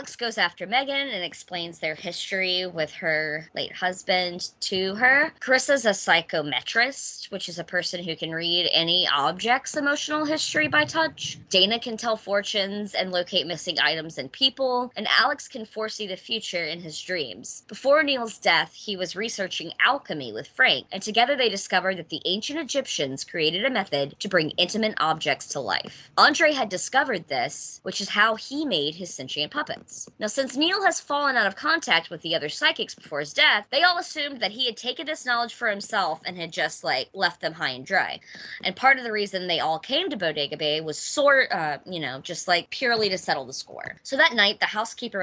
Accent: American